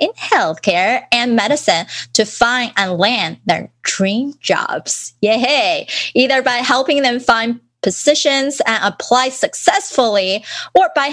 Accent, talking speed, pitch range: American, 125 wpm, 195-260 Hz